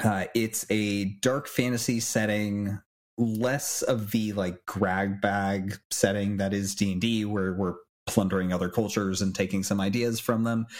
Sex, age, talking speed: male, 30-49, 150 wpm